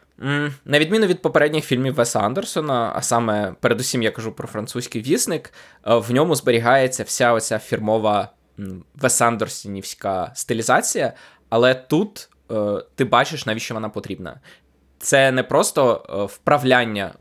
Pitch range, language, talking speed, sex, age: 110-135 Hz, Ukrainian, 120 wpm, male, 20-39